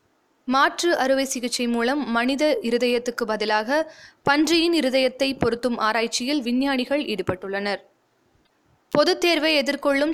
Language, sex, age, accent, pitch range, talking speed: Tamil, female, 20-39, native, 240-300 Hz, 95 wpm